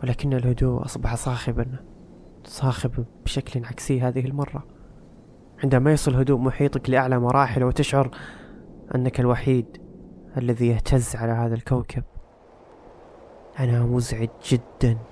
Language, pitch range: Arabic, 115-135 Hz